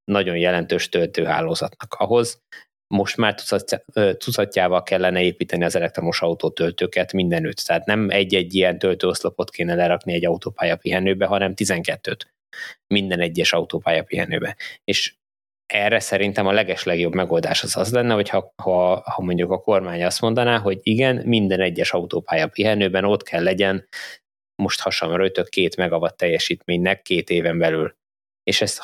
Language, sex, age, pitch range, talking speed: Hungarian, male, 20-39, 90-105 Hz, 140 wpm